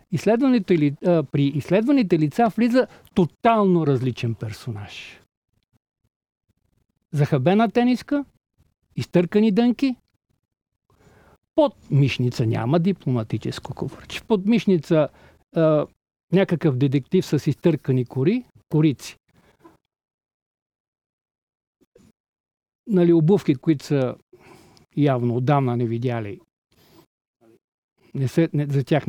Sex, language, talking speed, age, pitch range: male, Bulgarian, 70 wpm, 50-69, 140-215 Hz